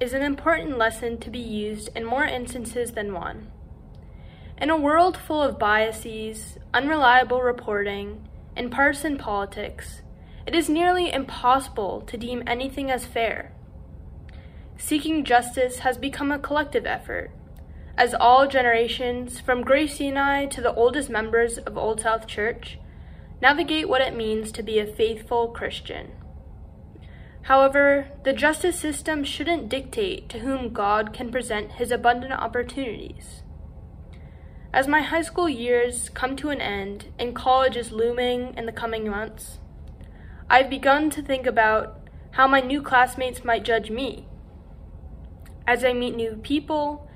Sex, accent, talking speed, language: female, American, 140 wpm, English